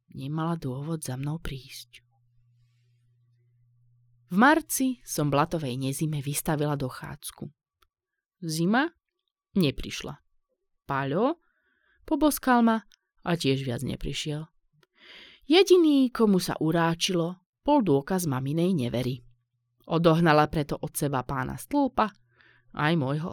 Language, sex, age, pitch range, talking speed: Slovak, female, 20-39, 135-190 Hz, 95 wpm